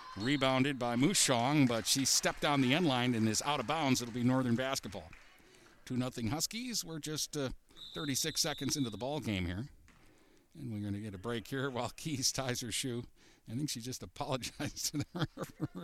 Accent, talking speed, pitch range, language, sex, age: American, 195 wpm, 120-145 Hz, English, male, 50-69